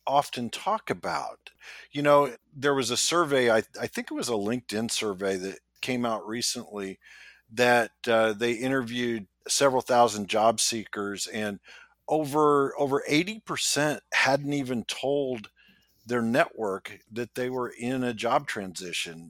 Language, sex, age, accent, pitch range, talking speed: English, male, 50-69, American, 110-140 Hz, 140 wpm